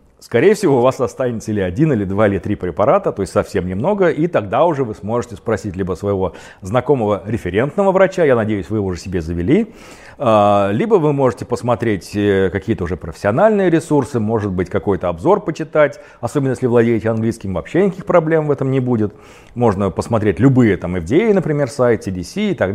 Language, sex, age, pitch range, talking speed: Russian, male, 40-59, 100-145 Hz, 180 wpm